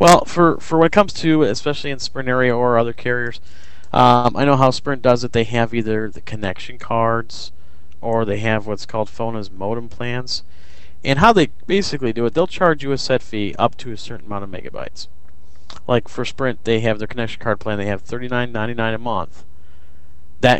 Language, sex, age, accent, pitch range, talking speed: English, male, 40-59, American, 95-130 Hz, 205 wpm